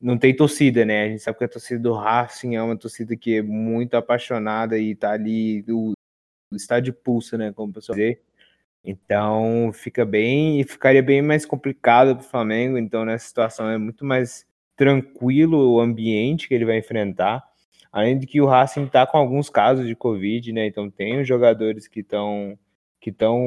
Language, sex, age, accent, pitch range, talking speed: Portuguese, male, 20-39, Brazilian, 110-135 Hz, 185 wpm